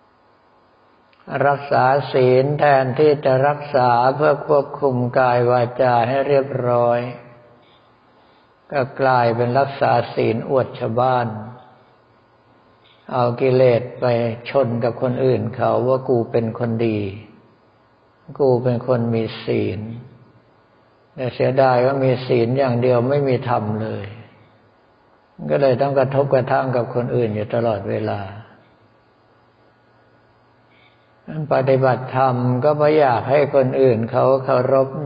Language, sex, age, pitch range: Thai, male, 60-79, 115-135 Hz